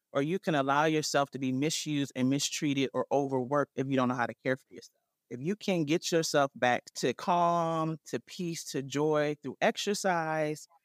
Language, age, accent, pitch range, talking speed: English, 30-49, American, 130-170 Hz, 195 wpm